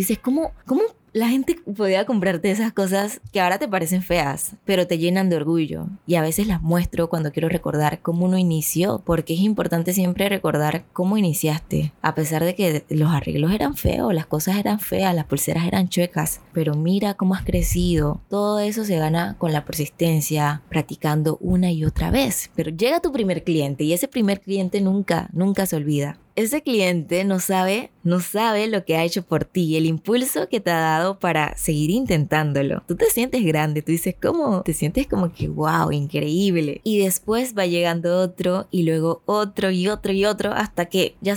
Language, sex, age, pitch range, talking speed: Spanish, female, 20-39, 165-200 Hz, 190 wpm